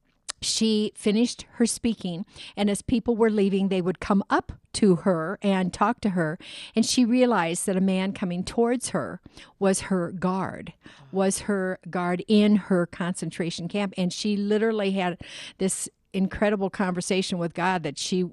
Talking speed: 160 wpm